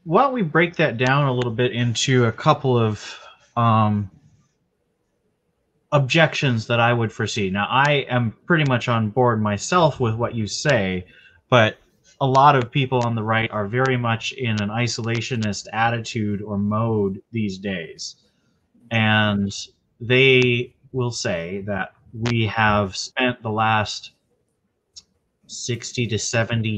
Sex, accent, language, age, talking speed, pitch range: male, American, English, 30-49, 140 wpm, 105-125 Hz